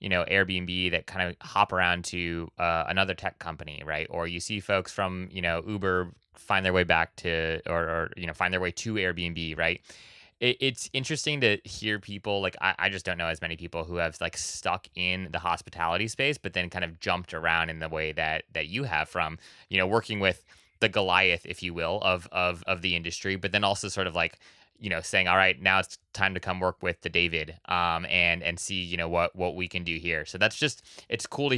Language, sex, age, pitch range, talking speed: English, male, 20-39, 85-110 Hz, 240 wpm